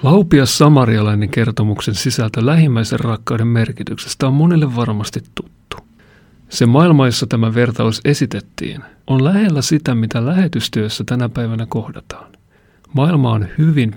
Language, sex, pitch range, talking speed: Finnish, male, 115-145 Hz, 120 wpm